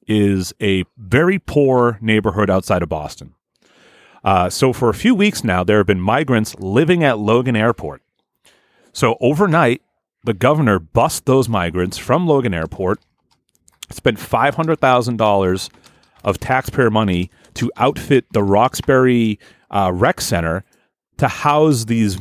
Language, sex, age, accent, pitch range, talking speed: English, male, 30-49, American, 100-135 Hz, 130 wpm